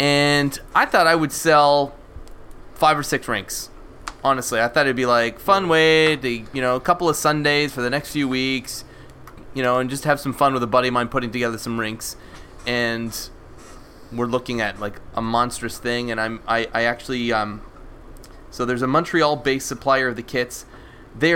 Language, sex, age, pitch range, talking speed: English, male, 20-39, 110-140 Hz, 195 wpm